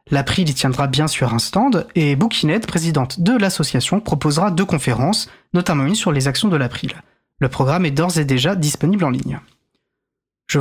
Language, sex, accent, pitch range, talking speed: French, male, French, 140-190 Hz, 180 wpm